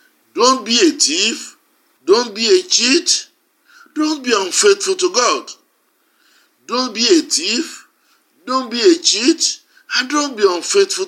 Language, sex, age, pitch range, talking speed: English, male, 50-69, 215-355 Hz, 135 wpm